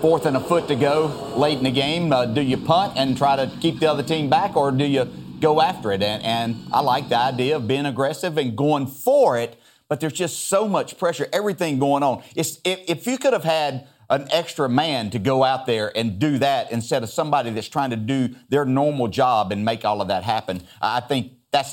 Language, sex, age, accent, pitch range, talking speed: English, male, 40-59, American, 120-160 Hz, 235 wpm